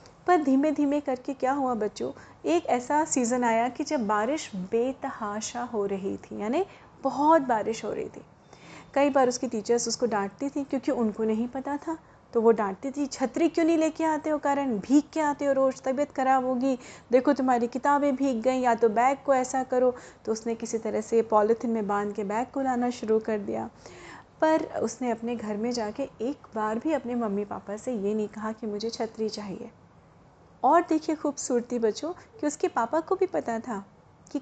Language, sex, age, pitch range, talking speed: Hindi, female, 30-49, 225-285 Hz, 195 wpm